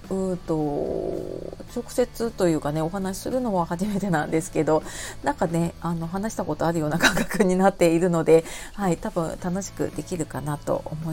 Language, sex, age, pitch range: Japanese, female, 40-59, 160-210 Hz